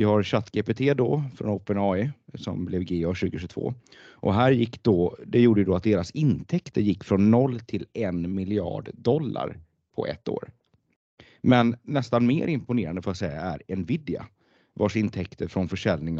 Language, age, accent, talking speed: Swedish, 30-49, native, 160 wpm